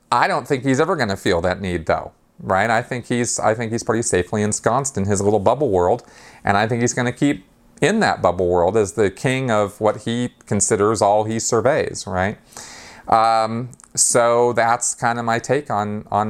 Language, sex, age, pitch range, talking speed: English, male, 40-59, 105-125 Hz, 210 wpm